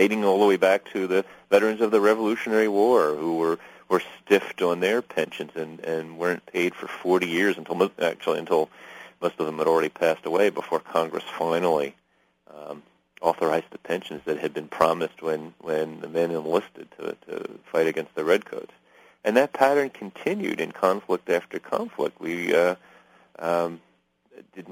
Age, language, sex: 40-59, English, male